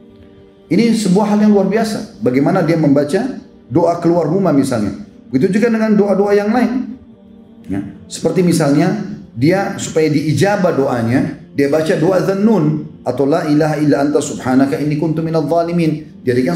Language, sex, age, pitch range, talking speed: Indonesian, male, 40-59, 140-185 Hz, 150 wpm